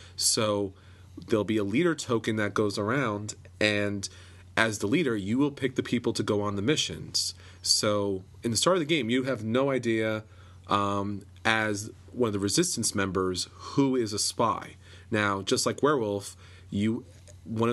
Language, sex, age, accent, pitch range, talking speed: English, male, 30-49, American, 95-115 Hz, 175 wpm